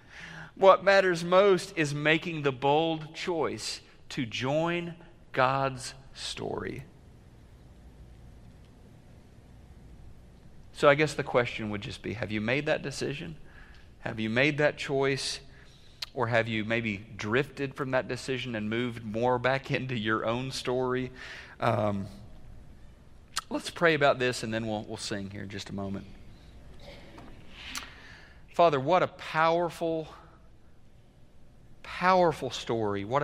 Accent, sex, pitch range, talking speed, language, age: American, male, 110-155 Hz, 125 wpm, English, 40-59